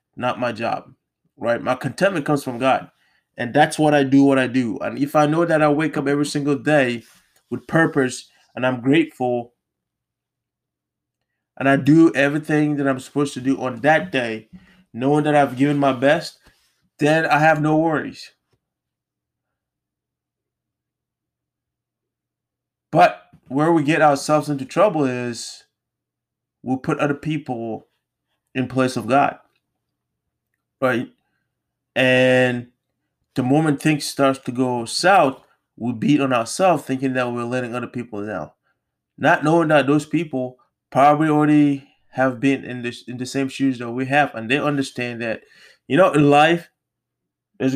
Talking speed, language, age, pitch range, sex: 150 wpm, English, 20-39, 125-150 Hz, male